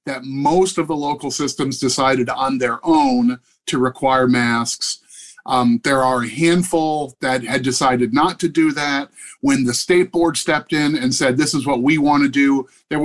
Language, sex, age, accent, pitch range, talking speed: English, male, 30-49, American, 130-175 Hz, 190 wpm